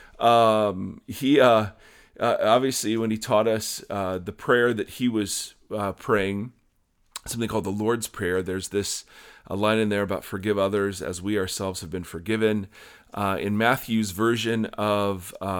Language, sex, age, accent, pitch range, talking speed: English, male, 40-59, American, 100-115 Hz, 165 wpm